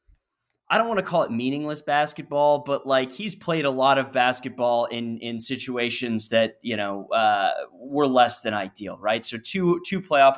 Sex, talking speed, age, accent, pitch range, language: male, 185 wpm, 20-39, American, 120-145 Hz, English